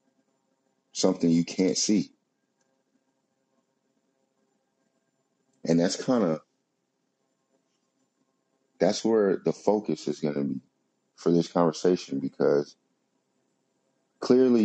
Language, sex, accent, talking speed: English, male, American, 85 wpm